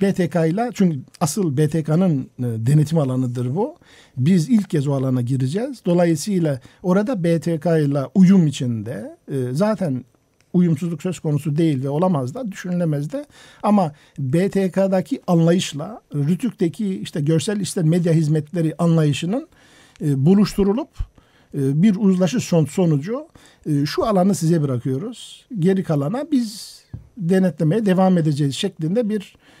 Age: 50-69